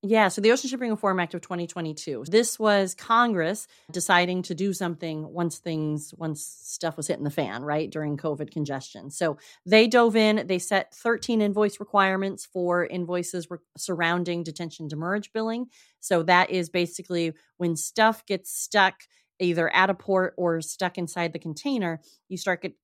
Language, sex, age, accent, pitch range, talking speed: English, female, 30-49, American, 170-210 Hz, 170 wpm